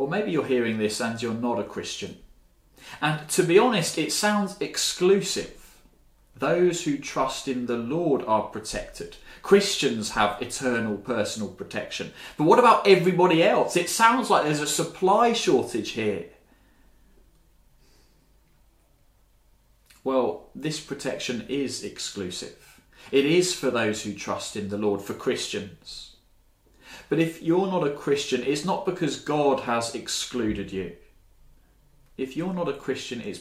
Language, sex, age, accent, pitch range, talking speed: English, male, 30-49, British, 120-160 Hz, 140 wpm